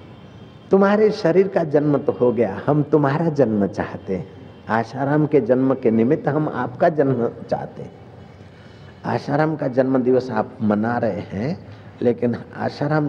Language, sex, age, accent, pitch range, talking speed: Hindi, male, 60-79, native, 115-155 Hz, 140 wpm